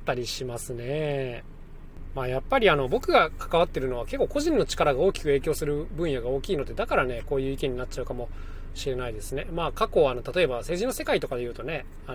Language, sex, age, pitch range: Japanese, male, 20-39, 130-205 Hz